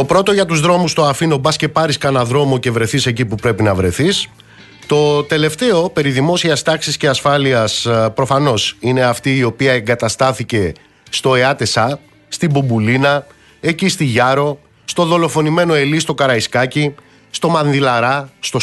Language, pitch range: Greek, 115-145 Hz